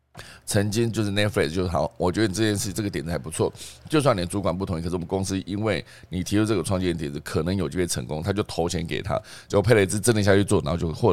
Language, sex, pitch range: Chinese, male, 85-110 Hz